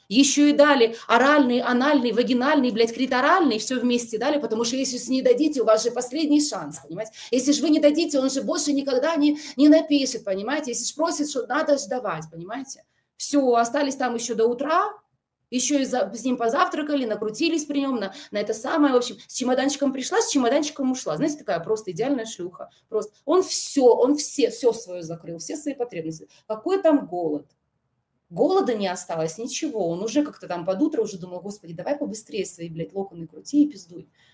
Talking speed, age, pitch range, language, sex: 190 wpm, 20-39, 195-285 Hz, Russian, female